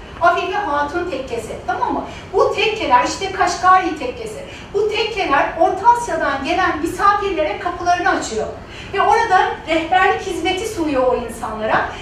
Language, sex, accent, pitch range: Turkish, female, native, 305-390 Hz